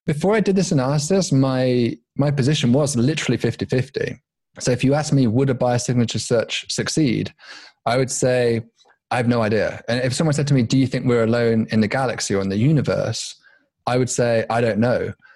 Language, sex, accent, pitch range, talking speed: English, male, British, 115-150 Hz, 205 wpm